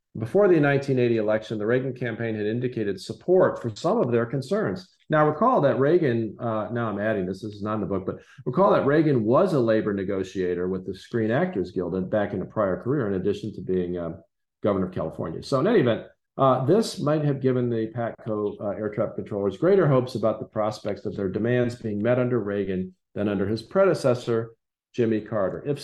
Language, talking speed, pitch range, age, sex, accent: English, 205 wpm, 105-140 Hz, 40-59, male, American